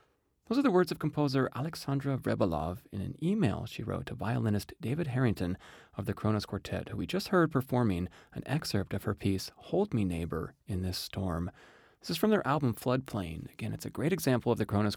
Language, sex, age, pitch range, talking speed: English, male, 30-49, 100-125 Hz, 205 wpm